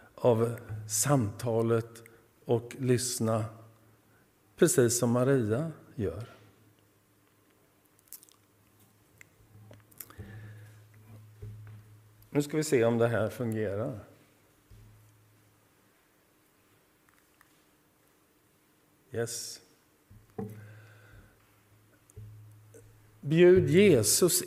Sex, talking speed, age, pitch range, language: male, 45 wpm, 50-69, 105-145 Hz, Swedish